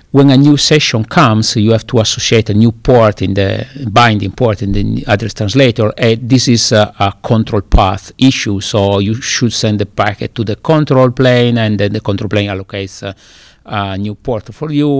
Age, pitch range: 50-69, 105-130 Hz